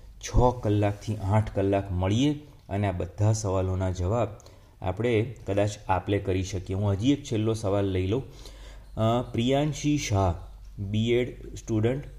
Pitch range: 95-120 Hz